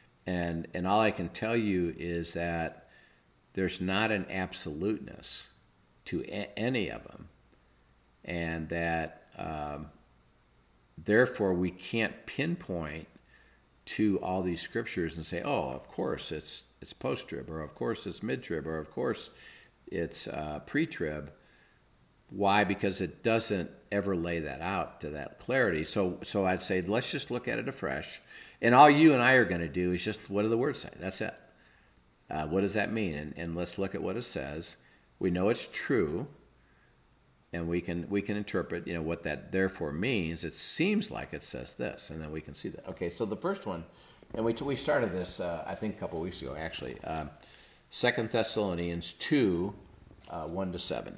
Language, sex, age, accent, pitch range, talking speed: English, male, 50-69, American, 80-100 Hz, 180 wpm